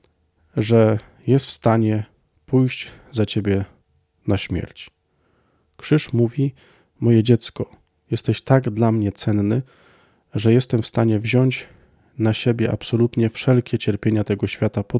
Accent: native